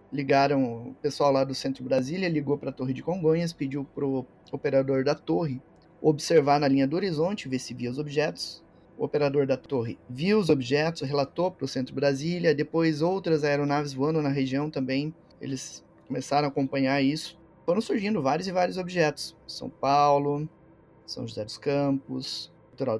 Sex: male